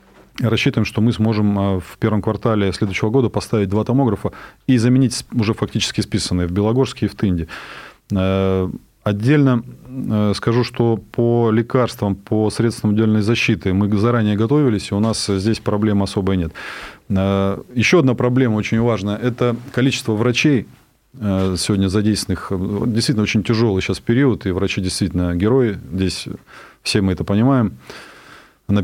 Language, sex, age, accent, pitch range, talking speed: Russian, male, 20-39, native, 95-115 Hz, 135 wpm